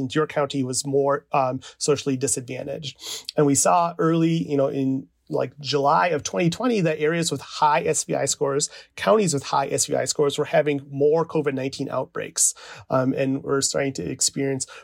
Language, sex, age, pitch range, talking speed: English, male, 30-49, 140-165 Hz, 160 wpm